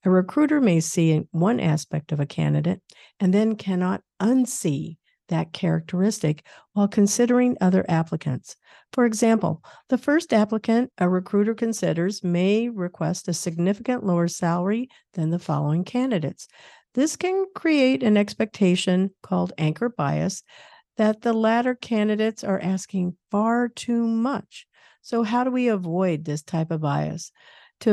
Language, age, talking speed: English, 50-69, 140 wpm